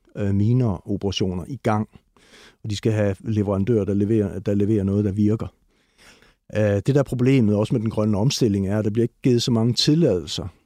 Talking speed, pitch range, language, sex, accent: 180 wpm, 100-120 Hz, Danish, male, native